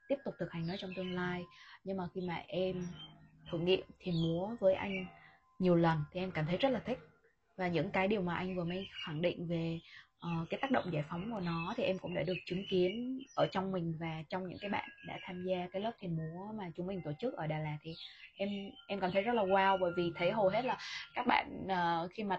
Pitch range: 165-195 Hz